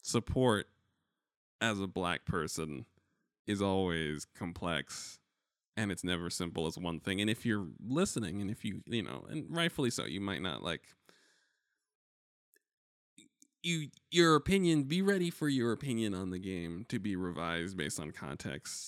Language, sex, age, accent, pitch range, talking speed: English, male, 20-39, American, 90-120 Hz, 155 wpm